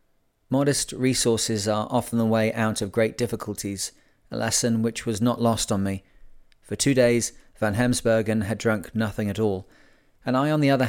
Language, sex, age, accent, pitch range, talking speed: English, male, 30-49, British, 105-125 Hz, 180 wpm